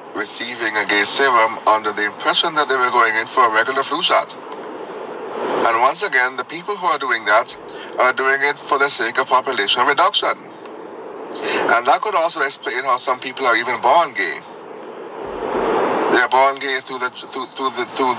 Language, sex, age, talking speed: English, male, 30-49, 190 wpm